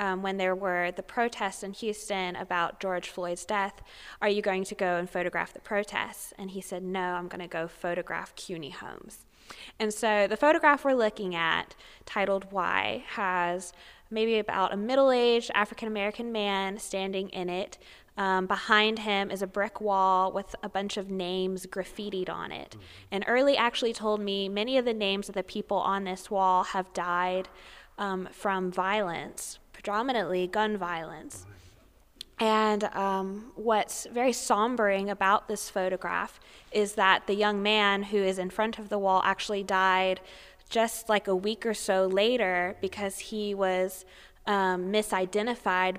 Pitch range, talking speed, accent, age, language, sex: 185-210 Hz, 160 wpm, American, 20-39, English, female